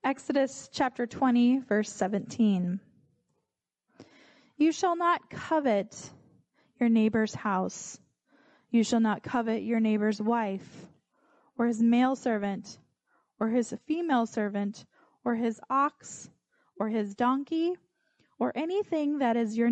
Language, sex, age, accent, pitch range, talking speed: English, female, 20-39, American, 220-315 Hz, 115 wpm